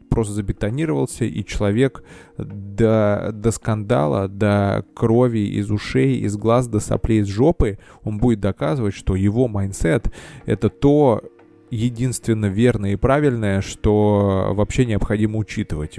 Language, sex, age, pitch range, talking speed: Russian, male, 20-39, 100-115 Hz, 125 wpm